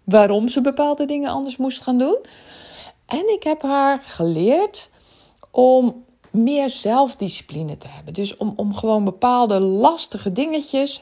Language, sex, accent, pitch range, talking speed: Dutch, female, Dutch, 195-270 Hz, 135 wpm